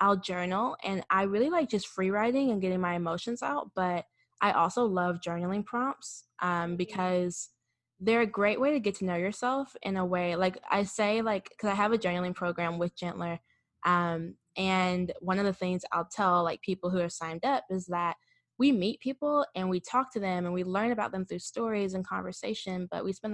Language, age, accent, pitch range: English, 10-29, American, 175-205 Hz